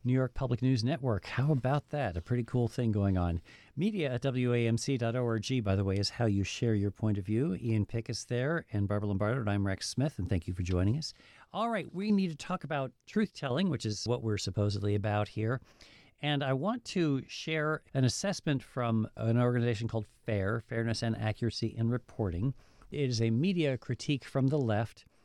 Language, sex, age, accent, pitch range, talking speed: English, male, 50-69, American, 110-140 Hz, 200 wpm